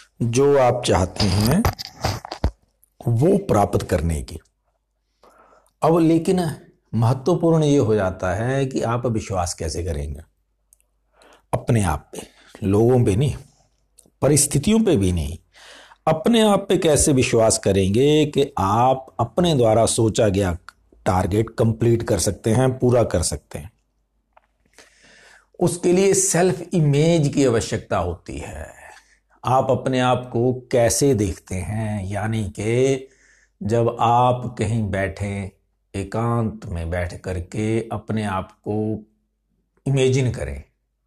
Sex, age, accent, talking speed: male, 60-79, native, 120 wpm